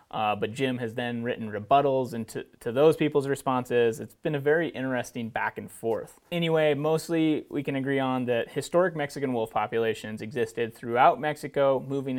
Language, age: English, 30-49